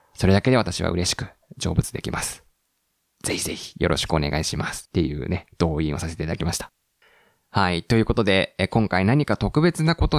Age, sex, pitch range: 20-39, male, 85-120 Hz